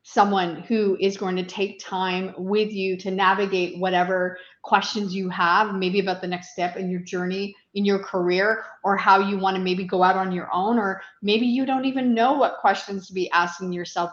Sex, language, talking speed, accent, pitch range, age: female, English, 210 wpm, American, 180-215 Hz, 30-49